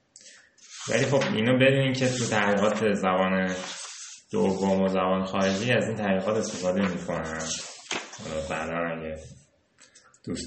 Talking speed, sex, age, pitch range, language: 120 wpm, male, 20-39, 85-115 Hz, Persian